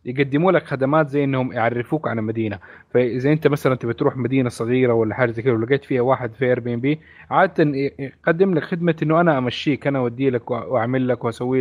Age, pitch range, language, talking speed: 20-39, 125-160 Hz, Arabic, 190 wpm